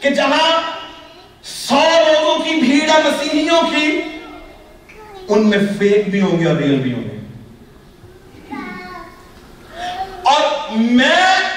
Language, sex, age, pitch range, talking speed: Urdu, male, 40-59, 270-335 Hz, 95 wpm